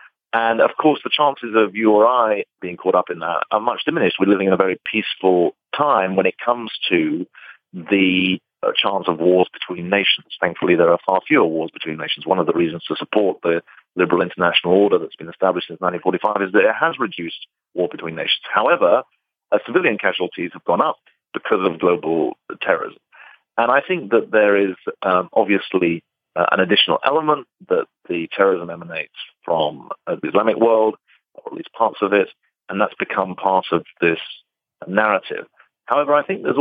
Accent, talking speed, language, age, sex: British, 185 wpm, English, 40-59, male